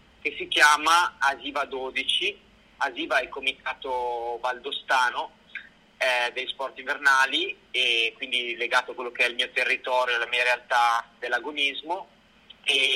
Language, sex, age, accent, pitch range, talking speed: Italian, male, 30-49, native, 120-145 Hz, 135 wpm